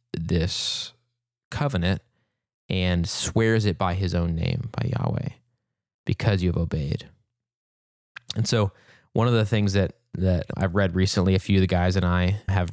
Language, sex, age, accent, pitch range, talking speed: English, male, 20-39, American, 90-115 Hz, 155 wpm